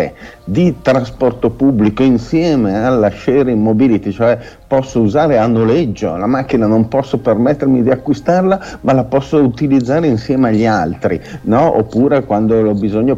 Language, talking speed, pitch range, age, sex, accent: Italian, 140 wpm, 105-140 Hz, 50-69, male, native